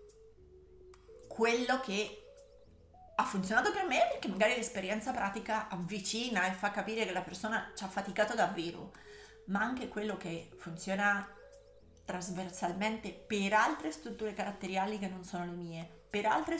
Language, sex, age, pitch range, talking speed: Italian, female, 30-49, 185-230 Hz, 135 wpm